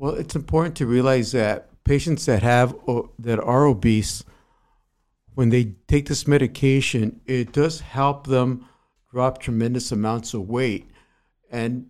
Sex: male